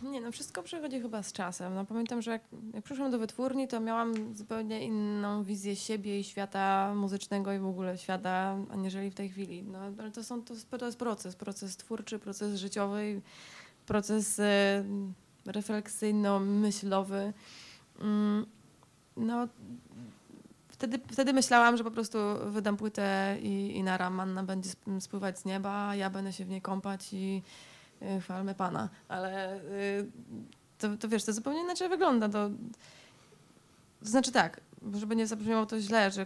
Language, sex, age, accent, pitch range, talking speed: Polish, female, 20-39, native, 195-220 Hz, 155 wpm